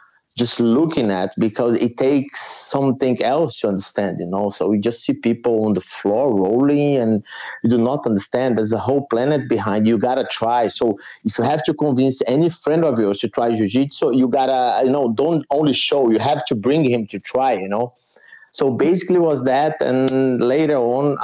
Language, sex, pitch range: English, male, 105-130 Hz